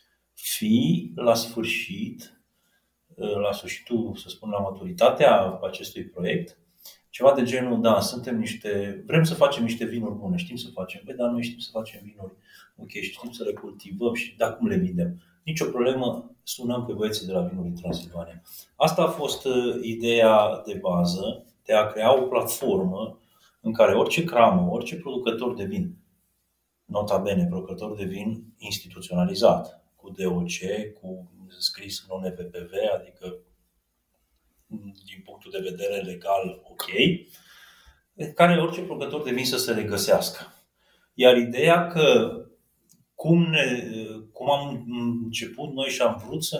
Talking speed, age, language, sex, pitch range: 140 wpm, 30-49, Romanian, male, 95-130 Hz